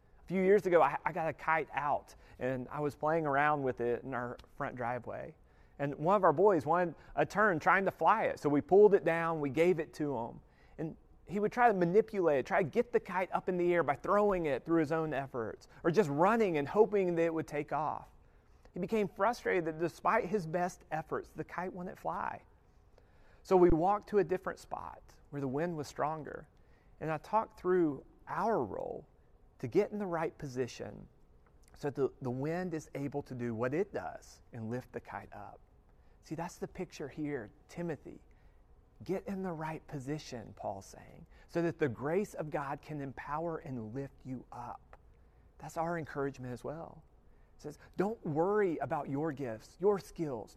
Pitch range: 135-180 Hz